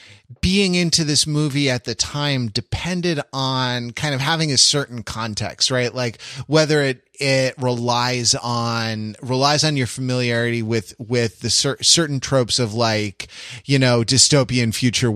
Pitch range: 110-140 Hz